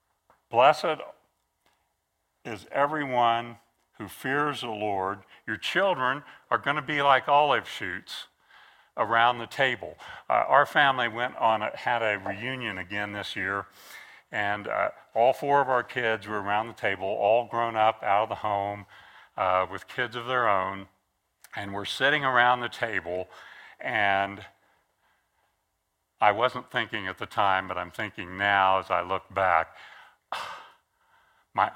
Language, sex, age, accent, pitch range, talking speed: English, male, 60-79, American, 100-125 Hz, 145 wpm